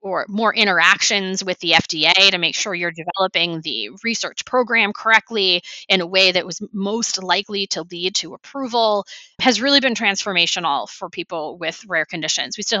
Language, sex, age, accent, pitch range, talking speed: English, female, 20-39, American, 175-210 Hz, 175 wpm